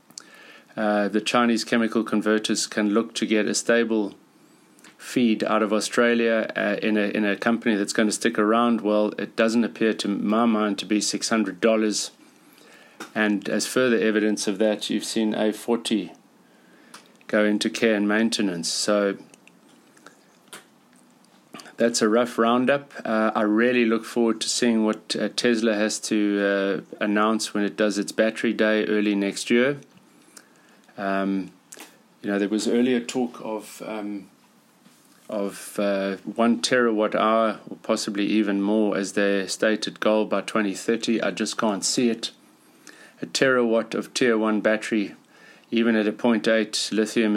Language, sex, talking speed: English, male, 150 wpm